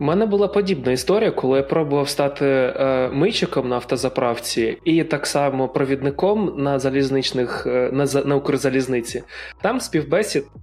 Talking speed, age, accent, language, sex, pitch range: 140 wpm, 20-39, native, Ukrainian, male, 135-175 Hz